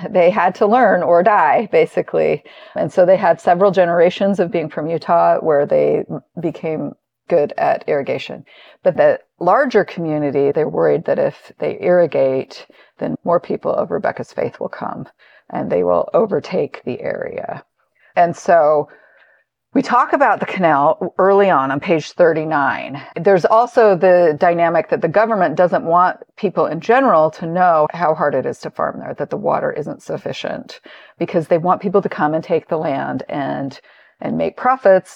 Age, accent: 40-59, American